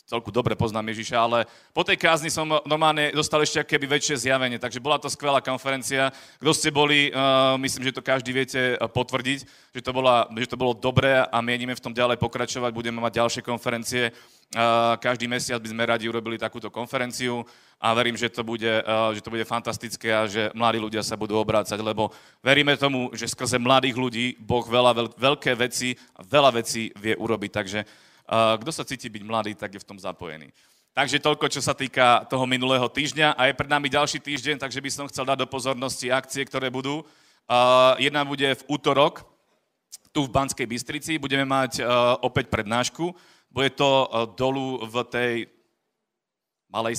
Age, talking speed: 30-49, 185 wpm